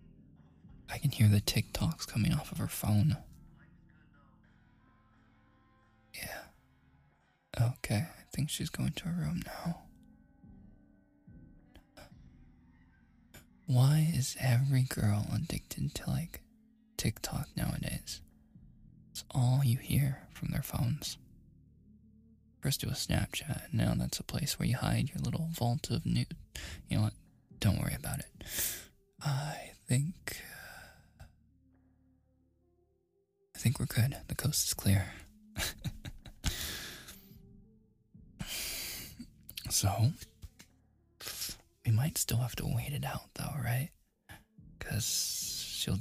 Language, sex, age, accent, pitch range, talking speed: English, male, 20-39, American, 90-145 Hz, 105 wpm